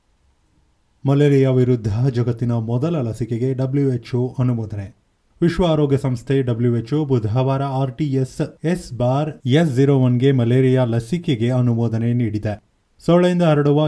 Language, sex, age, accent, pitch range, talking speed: Kannada, male, 30-49, native, 115-145 Hz, 90 wpm